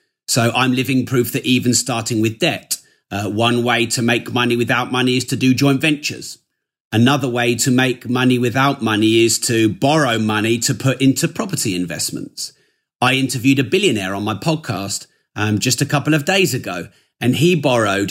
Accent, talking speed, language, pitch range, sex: British, 180 wpm, English, 105-135 Hz, male